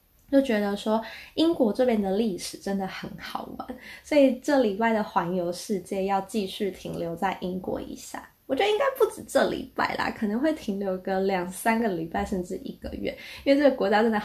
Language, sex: Chinese, female